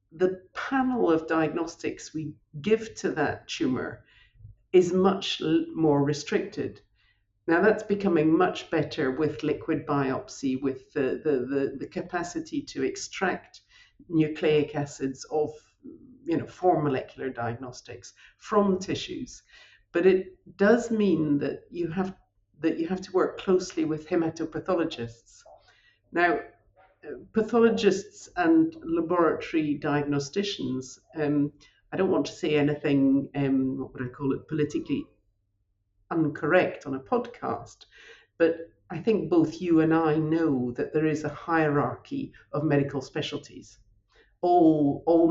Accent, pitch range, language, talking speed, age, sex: British, 135-180 Hz, English, 130 wpm, 50-69, female